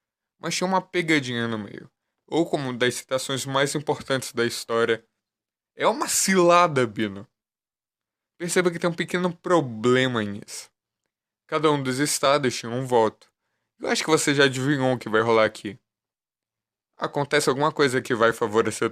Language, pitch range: Portuguese, 115-160 Hz